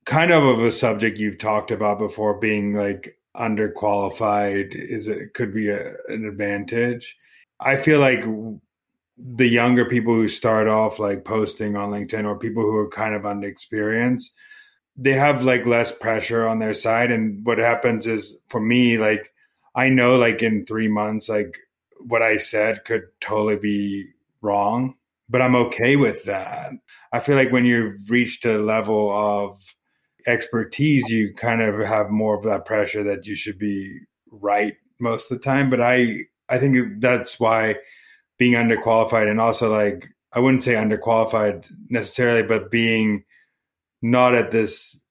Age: 30-49